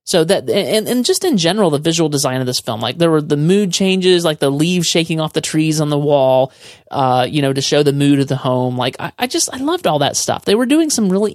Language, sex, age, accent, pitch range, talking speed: English, male, 30-49, American, 140-195 Hz, 280 wpm